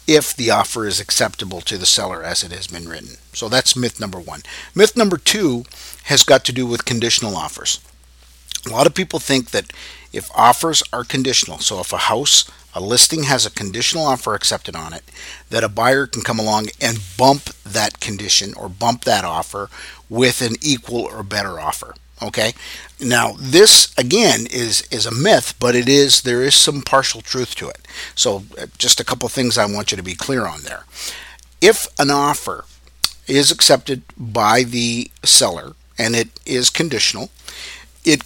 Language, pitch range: English, 100-135 Hz